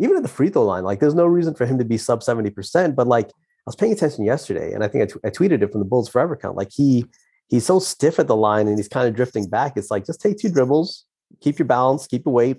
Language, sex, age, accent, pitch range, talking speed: English, male, 30-49, American, 105-125 Hz, 295 wpm